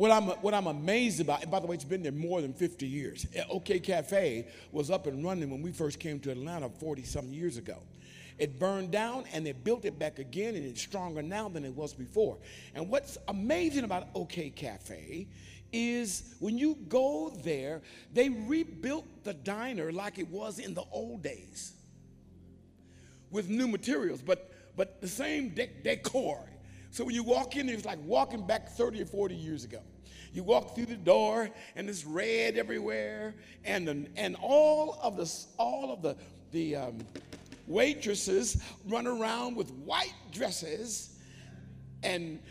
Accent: American